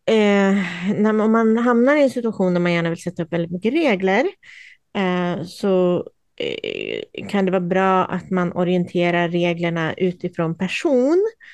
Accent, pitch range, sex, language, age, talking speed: native, 180-220 Hz, female, Swedish, 30-49, 160 wpm